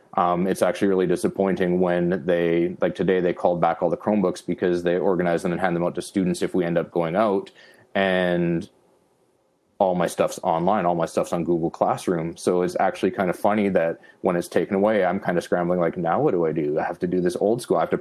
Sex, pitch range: male, 90-95 Hz